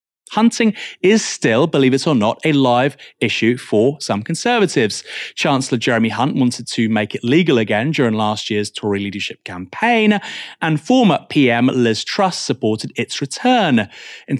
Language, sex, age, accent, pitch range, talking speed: English, male, 30-49, British, 120-170 Hz, 155 wpm